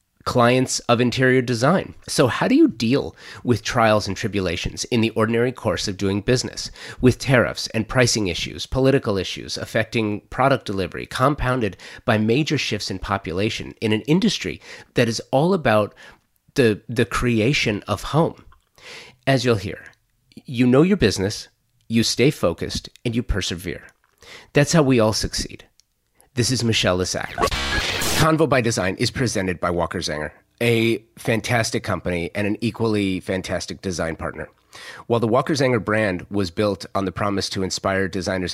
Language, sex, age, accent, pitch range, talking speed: English, male, 30-49, American, 95-120 Hz, 155 wpm